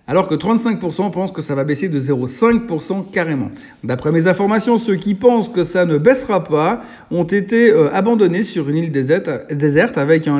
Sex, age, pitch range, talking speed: male, 50-69, 155-205 Hz, 180 wpm